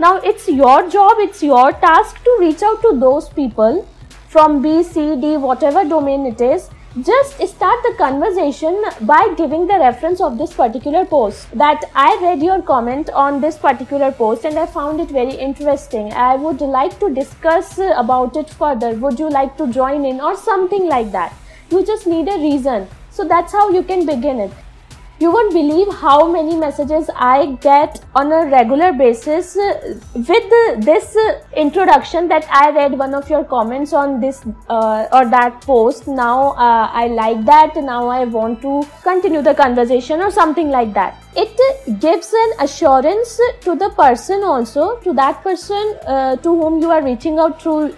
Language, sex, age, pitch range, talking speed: English, female, 20-39, 270-360 Hz, 175 wpm